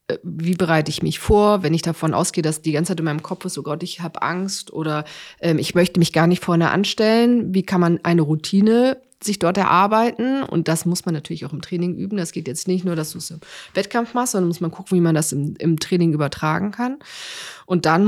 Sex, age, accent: female, 30-49, German